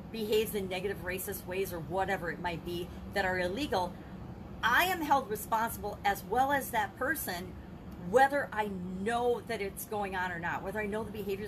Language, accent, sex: English, American, female